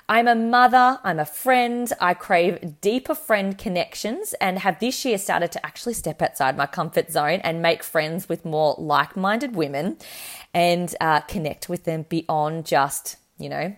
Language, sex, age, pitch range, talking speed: English, female, 20-39, 160-215 Hz, 170 wpm